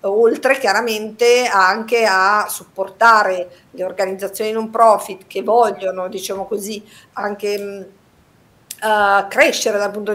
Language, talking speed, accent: Italian, 105 wpm, native